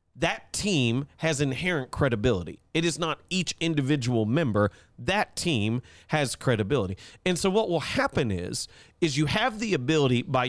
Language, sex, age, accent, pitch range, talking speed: English, male, 30-49, American, 115-160 Hz, 155 wpm